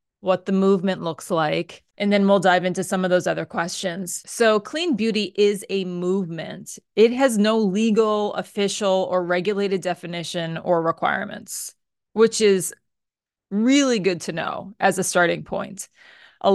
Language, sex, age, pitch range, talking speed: English, female, 30-49, 185-220 Hz, 150 wpm